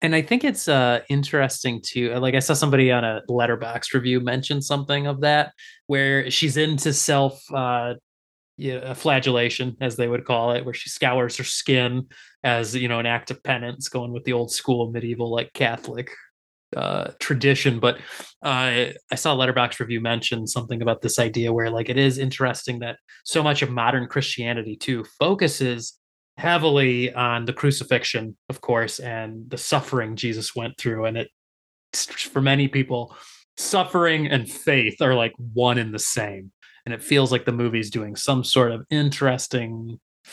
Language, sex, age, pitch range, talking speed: English, male, 20-39, 120-145 Hz, 170 wpm